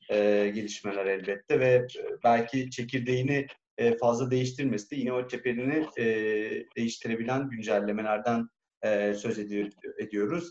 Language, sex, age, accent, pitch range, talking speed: Turkish, male, 40-59, native, 110-150 Hz, 80 wpm